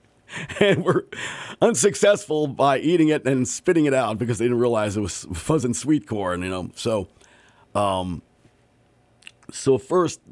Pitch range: 105-145 Hz